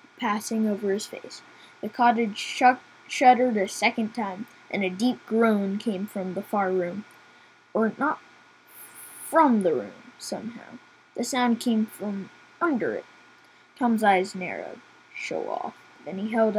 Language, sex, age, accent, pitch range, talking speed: English, female, 10-29, American, 210-265 Hz, 140 wpm